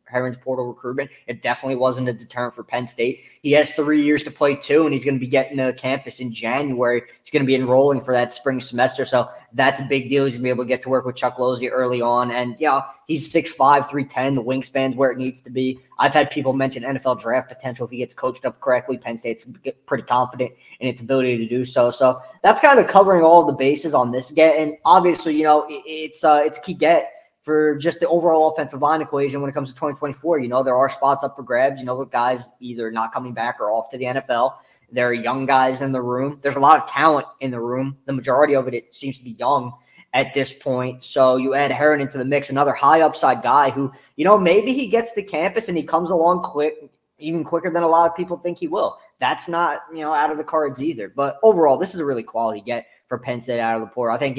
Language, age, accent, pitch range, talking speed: English, 10-29, American, 125-150 Hz, 255 wpm